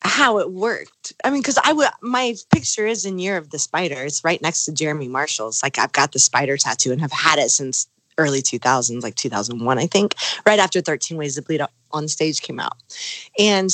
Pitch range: 140-190 Hz